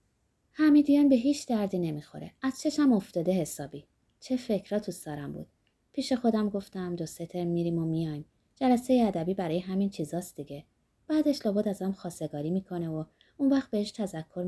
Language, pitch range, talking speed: Persian, 150-220 Hz, 160 wpm